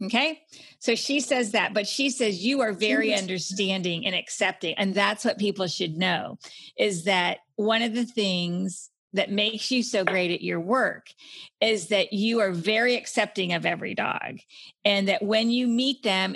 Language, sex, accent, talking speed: English, female, American, 180 wpm